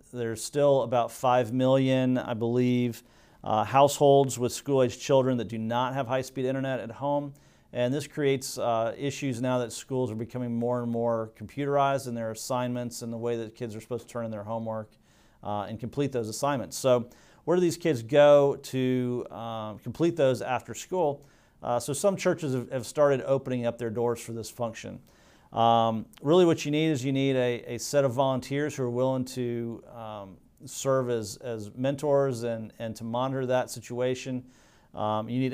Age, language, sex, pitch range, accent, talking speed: 40-59, English, male, 115-135 Hz, American, 185 wpm